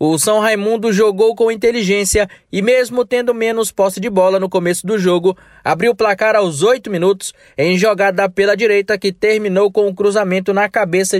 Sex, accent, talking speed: male, Brazilian, 190 wpm